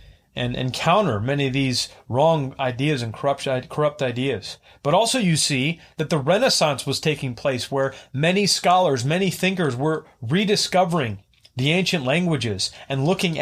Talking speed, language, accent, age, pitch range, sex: 145 wpm, English, American, 30-49, 125-165 Hz, male